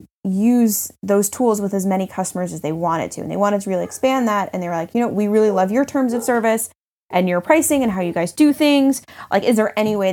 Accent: American